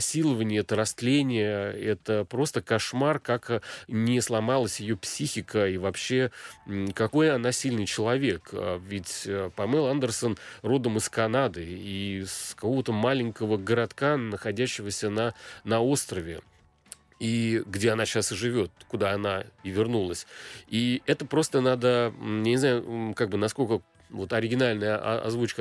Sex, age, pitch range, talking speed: male, 30-49, 105-140 Hz, 120 wpm